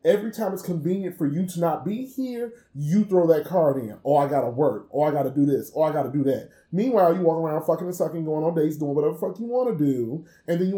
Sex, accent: male, American